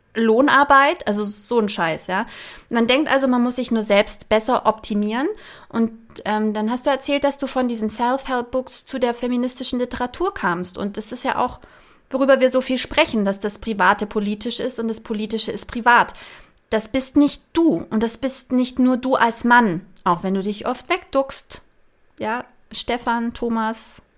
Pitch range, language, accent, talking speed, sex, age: 205-255 Hz, German, German, 180 wpm, female, 30-49